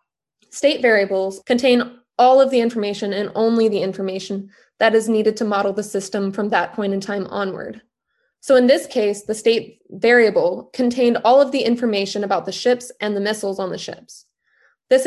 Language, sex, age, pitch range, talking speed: English, female, 20-39, 200-235 Hz, 185 wpm